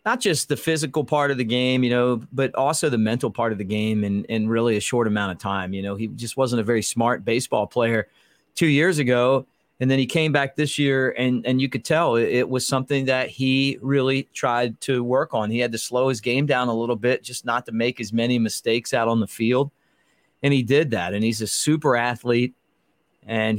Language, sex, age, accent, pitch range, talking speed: English, male, 40-59, American, 115-145 Hz, 235 wpm